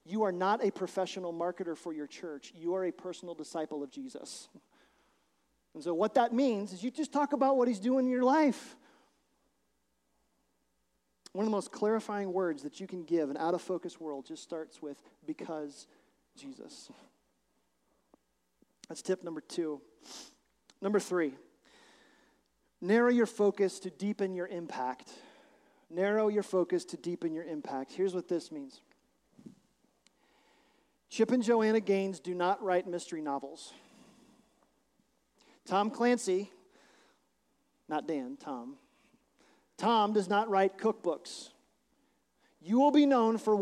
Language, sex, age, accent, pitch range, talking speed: English, male, 40-59, American, 175-240 Hz, 135 wpm